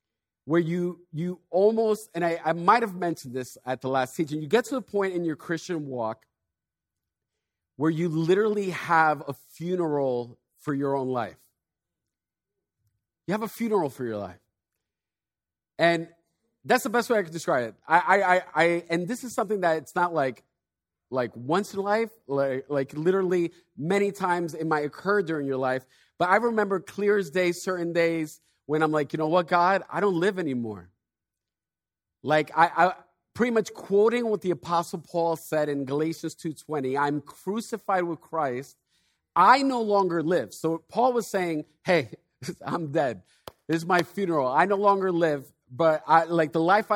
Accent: American